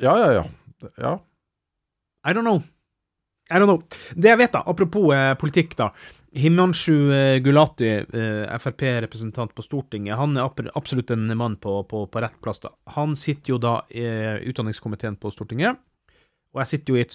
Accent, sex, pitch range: Norwegian, male, 115-150 Hz